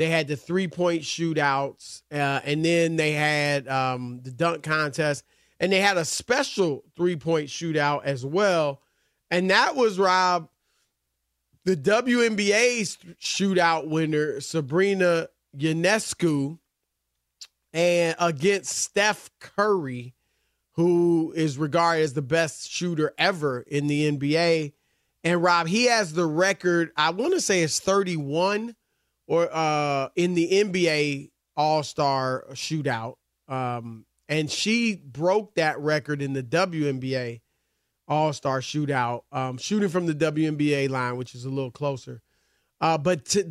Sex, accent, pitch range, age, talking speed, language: male, American, 145-190 Hz, 30-49, 125 wpm, English